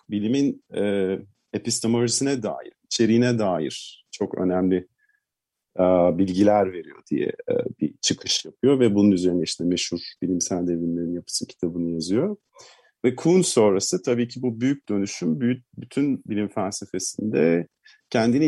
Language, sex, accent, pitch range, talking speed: Turkish, male, native, 95-120 Hz, 125 wpm